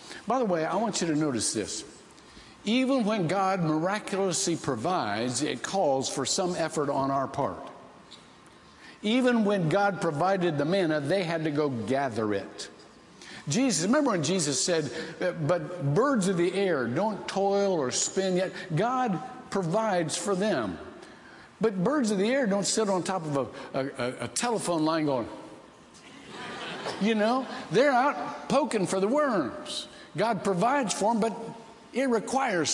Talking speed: 150 wpm